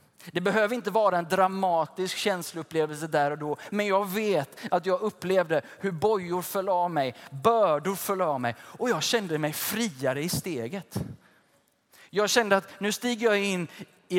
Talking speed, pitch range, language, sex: 170 wpm, 155-200 Hz, Swedish, male